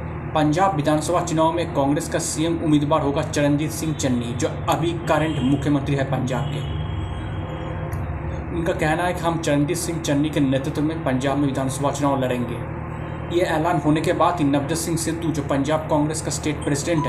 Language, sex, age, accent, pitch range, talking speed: Hindi, male, 20-39, native, 145-165 Hz, 175 wpm